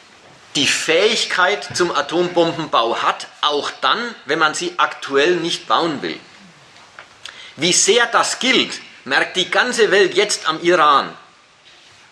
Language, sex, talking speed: German, male, 125 wpm